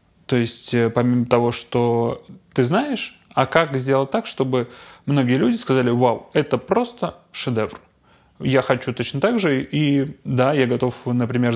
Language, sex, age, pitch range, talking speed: Russian, male, 20-39, 120-140 Hz, 150 wpm